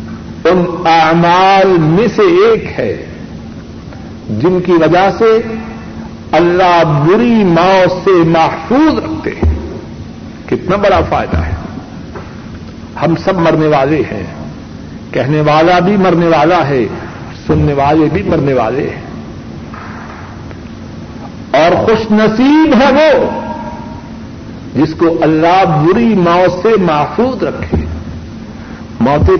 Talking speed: 105 wpm